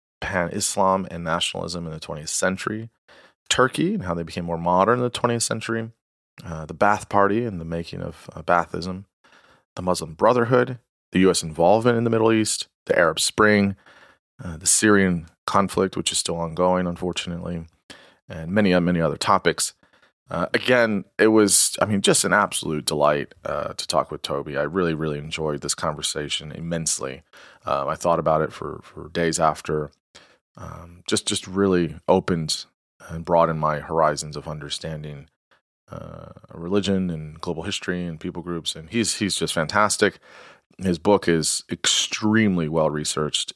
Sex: male